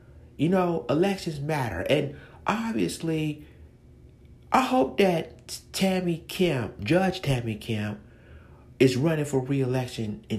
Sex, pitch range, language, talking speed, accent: male, 130-190 Hz, English, 110 wpm, American